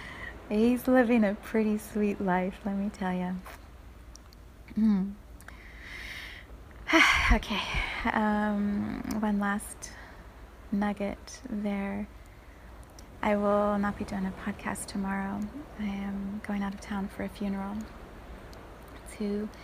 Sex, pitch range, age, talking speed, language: female, 190-210 Hz, 30-49, 105 wpm, English